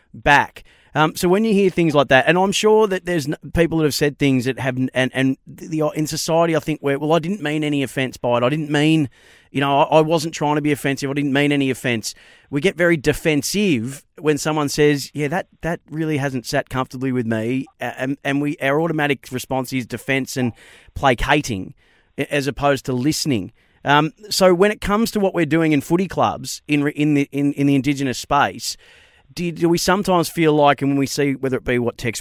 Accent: Australian